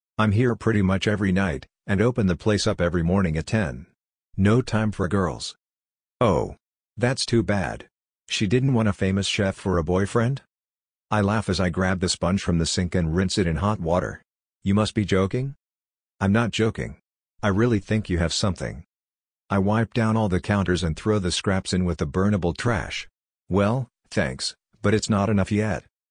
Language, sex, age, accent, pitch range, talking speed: English, male, 50-69, American, 85-105 Hz, 190 wpm